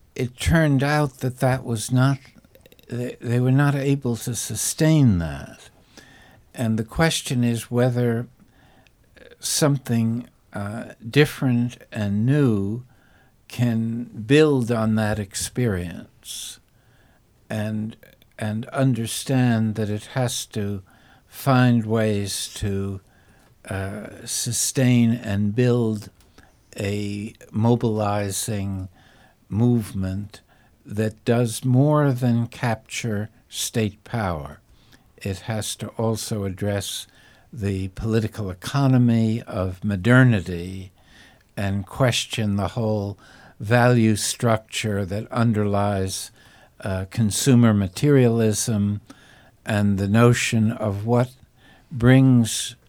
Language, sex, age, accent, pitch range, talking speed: Turkish, male, 60-79, American, 100-125 Hz, 90 wpm